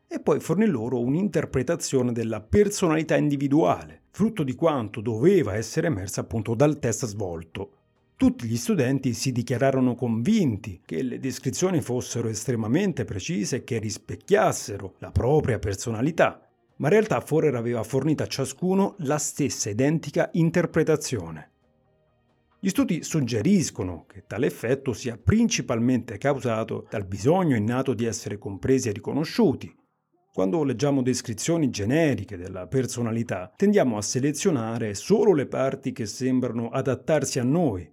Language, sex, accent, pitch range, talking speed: Italian, male, native, 115-150 Hz, 130 wpm